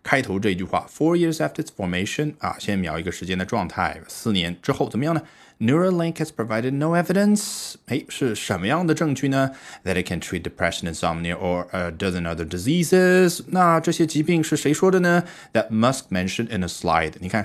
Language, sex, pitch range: Chinese, male, 90-145 Hz